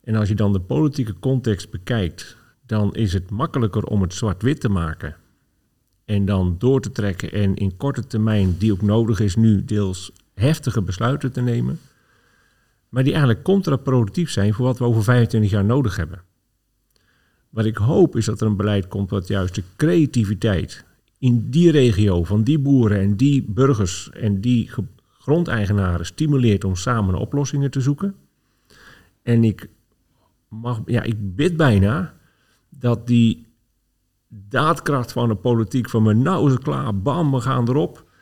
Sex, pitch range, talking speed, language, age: male, 105-135 Hz, 160 wpm, Dutch, 50-69